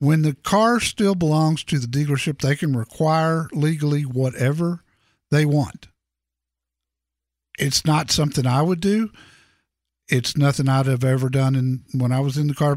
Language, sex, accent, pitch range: English, male, American, 130-175 Hz